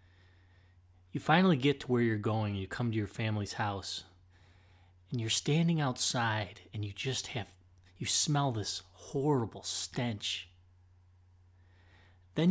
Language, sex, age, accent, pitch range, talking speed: English, male, 30-49, American, 90-125 Hz, 135 wpm